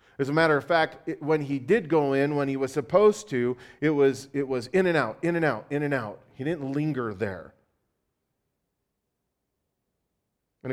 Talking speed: 190 wpm